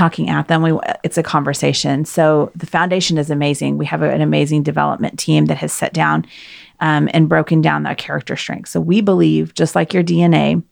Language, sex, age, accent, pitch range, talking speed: English, female, 30-49, American, 120-180 Hz, 195 wpm